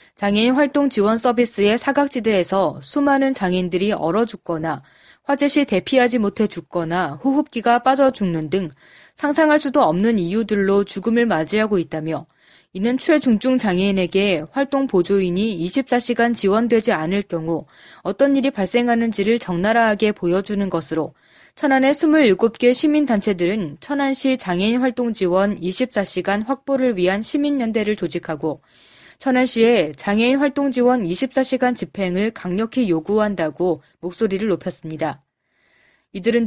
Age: 20-39